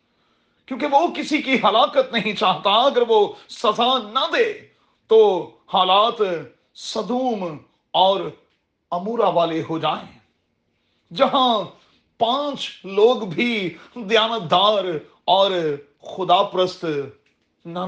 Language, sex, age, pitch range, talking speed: Urdu, male, 40-59, 185-255 Hz, 95 wpm